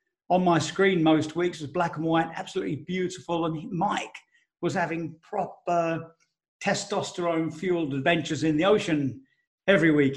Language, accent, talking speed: English, British, 135 wpm